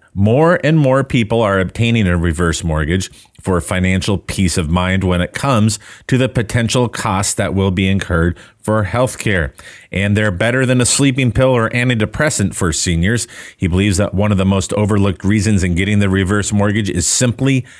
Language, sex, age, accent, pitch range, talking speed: English, male, 30-49, American, 90-115 Hz, 185 wpm